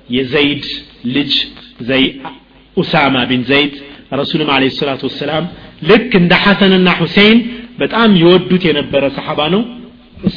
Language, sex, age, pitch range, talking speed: Amharic, male, 40-59, 135-225 Hz, 135 wpm